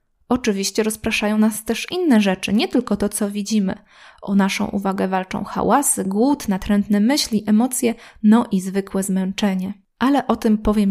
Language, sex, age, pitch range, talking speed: Polish, female, 20-39, 200-245 Hz, 155 wpm